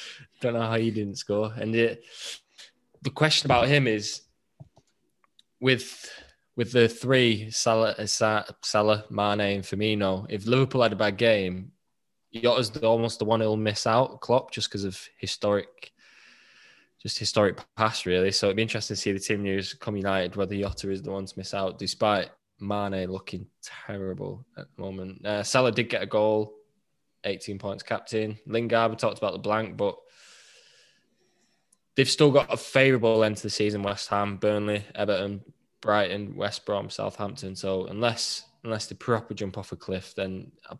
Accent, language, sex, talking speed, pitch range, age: British, English, male, 170 wpm, 100-120 Hz, 10-29